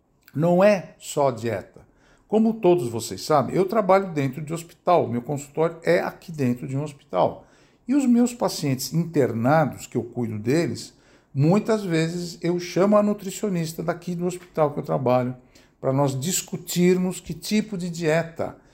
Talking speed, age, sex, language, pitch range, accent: 155 wpm, 60-79, male, Portuguese, 145-195 Hz, Brazilian